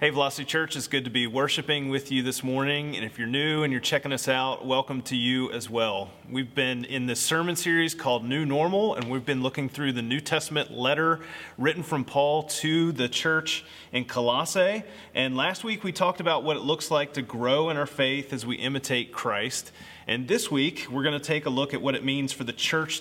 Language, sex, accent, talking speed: English, male, American, 225 wpm